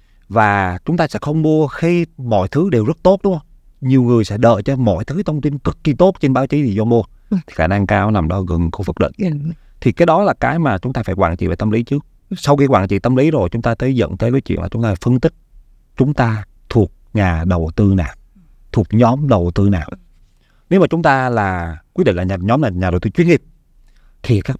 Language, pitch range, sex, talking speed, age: Vietnamese, 100-140 Hz, male, 260 wpm, 20-39